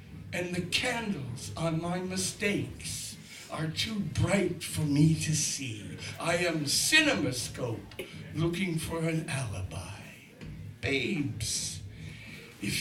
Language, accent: English, American